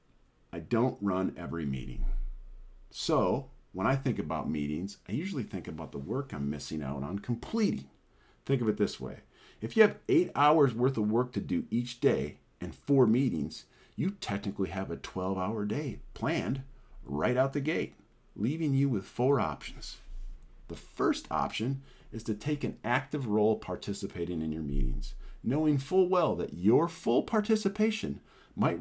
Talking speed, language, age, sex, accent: 165 wpm, English, 50-69, male, American